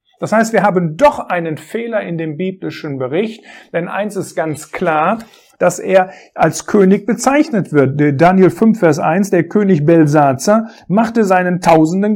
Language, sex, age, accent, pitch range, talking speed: German, male, 50-69, German, 165-215 Hz, 160 wpm